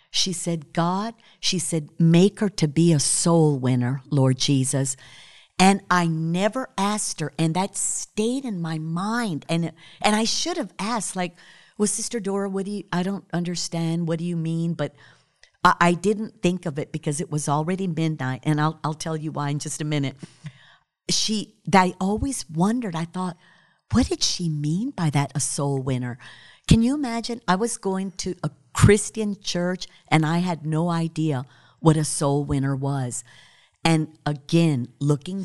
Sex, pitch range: female, 150-195 Hz